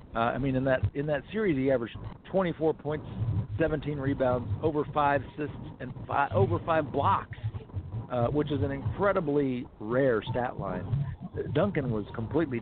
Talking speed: 155 wpm